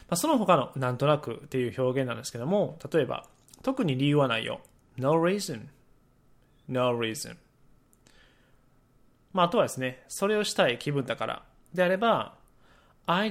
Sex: male